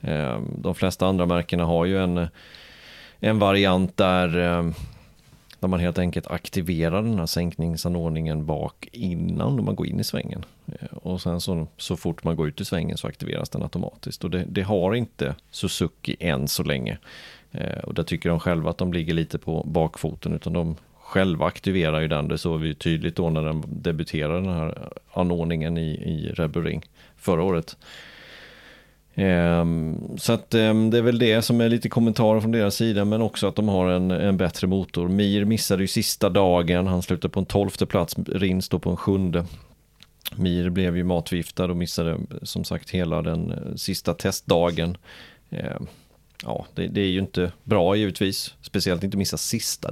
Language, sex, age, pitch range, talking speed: Swedish, male, 30-49, 85-100 Hz, 175 wpm